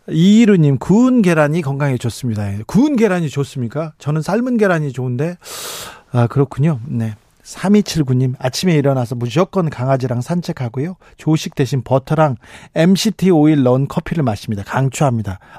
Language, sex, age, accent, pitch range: Korean, male, 40-59, native, 130-180 Hz